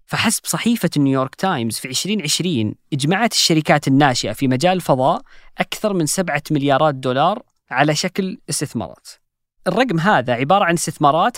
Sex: female